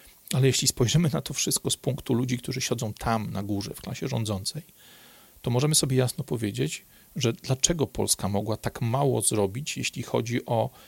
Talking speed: 175 wpm